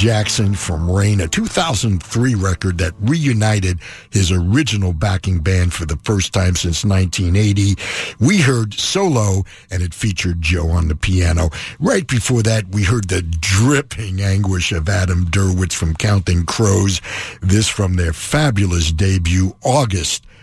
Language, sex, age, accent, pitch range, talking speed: English, male, 60-79, American, 90-115 Hz, 140 wpm